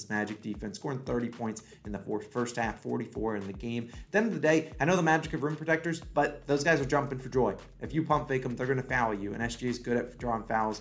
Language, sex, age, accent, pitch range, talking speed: English, male, 30-49, American, 110-140 Hz, 280 wpm